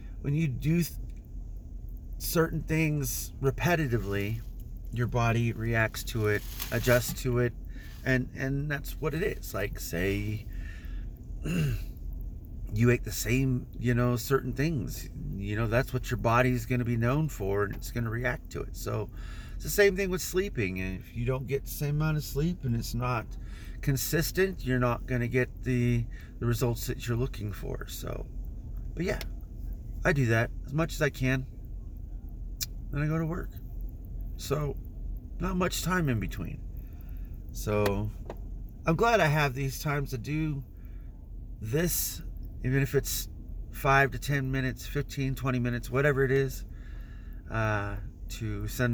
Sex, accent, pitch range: male, American, 105-140 Hz